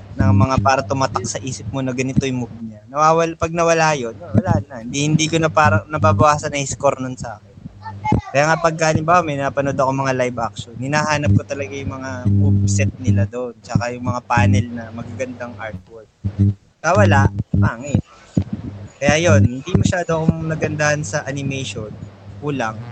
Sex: male